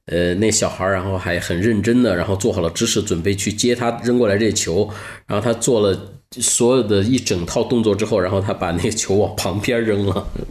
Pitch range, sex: 90-110 Hz, male